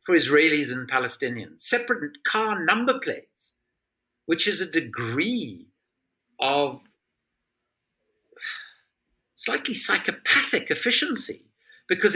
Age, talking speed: 50-69, 80 wpm